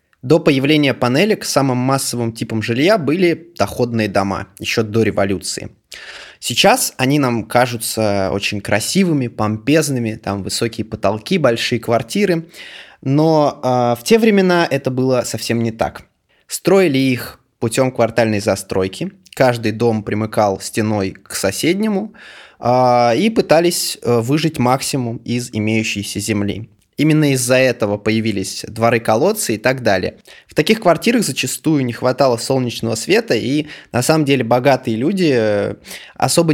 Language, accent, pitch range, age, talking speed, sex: Russian, native, 110-150 Hz, 20-39, 130 wpm, male